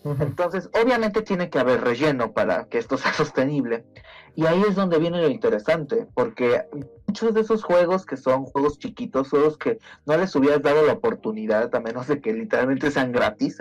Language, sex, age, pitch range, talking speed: Spanish, male, 30-49, 130-190 Hz, 185 wpm